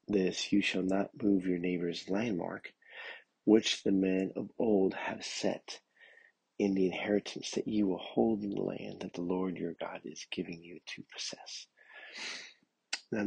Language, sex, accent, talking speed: English, male, American, 165 wpm